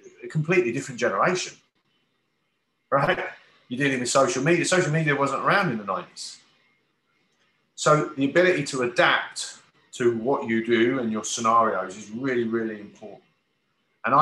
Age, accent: 40-59, British